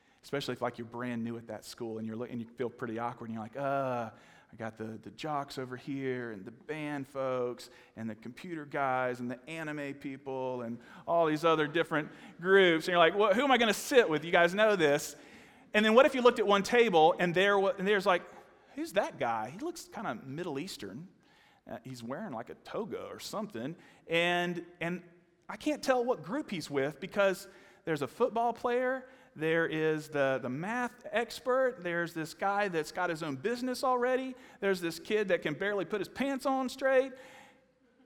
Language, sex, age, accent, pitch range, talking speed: English, male, 40-59, American, 135-225 Hz, 205 wpm